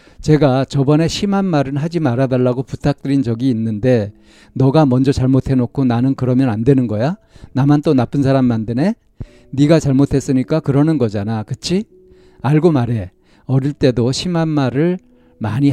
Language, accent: Korean, native